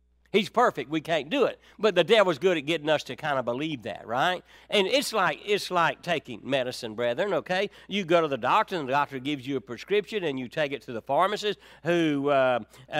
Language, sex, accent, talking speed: English, male, American, 225 wpm